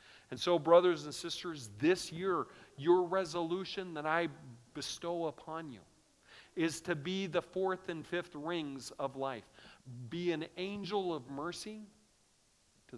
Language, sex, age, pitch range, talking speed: English, male, 50-69, 125-190 Hz, 140 wpm